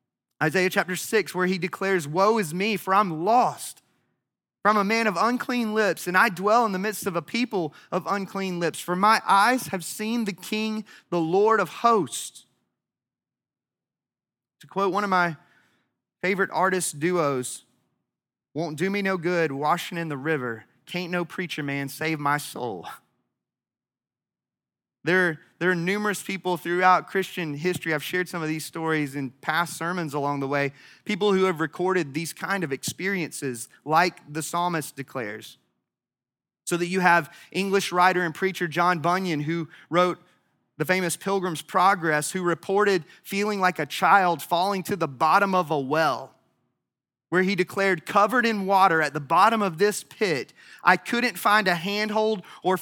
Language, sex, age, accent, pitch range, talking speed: English, male, 30-49, American, 160-200 Hz, 165 wpm